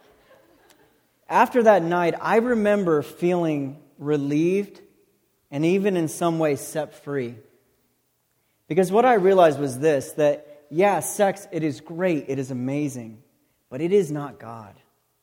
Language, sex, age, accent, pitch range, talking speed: English, male, 40-59, American, 140-180 Hz, 135 wpm